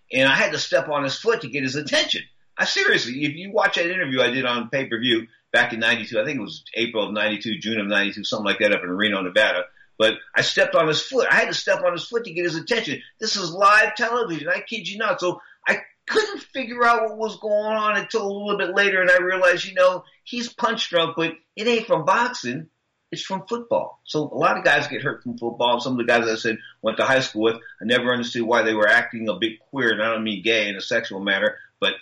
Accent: American